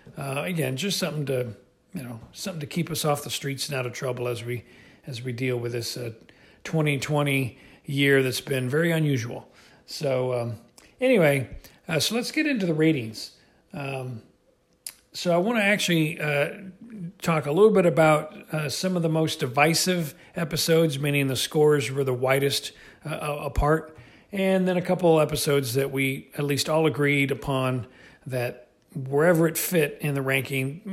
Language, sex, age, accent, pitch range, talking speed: English, male, 40-59, American, 135-165 Hz, 170 wpm